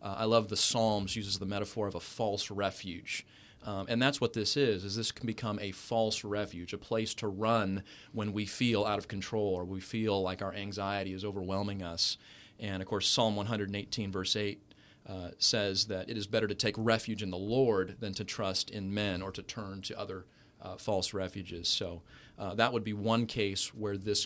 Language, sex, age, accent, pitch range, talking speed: English, male, 30-49, American, 100-115 Hz, 210 wpm